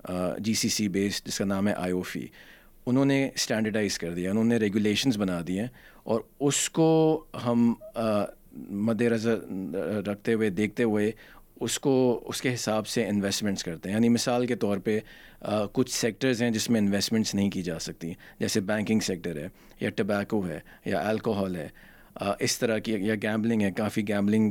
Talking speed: 185 wpm